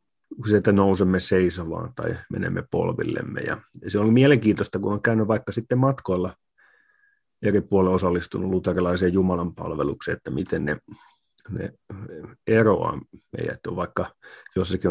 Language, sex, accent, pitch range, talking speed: Finnish, male, native, 95-110 Hz, 120 wpm